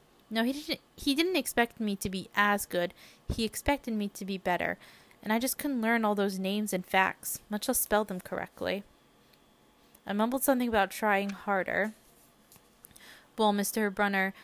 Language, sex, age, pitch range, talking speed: English, female, 20-39, 185-225 Hz, 165 wpm